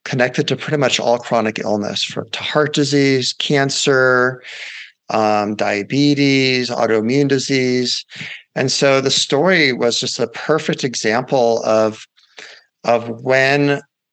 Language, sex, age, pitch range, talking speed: English, male, 40-59, 110-135 Hz, 115 wpm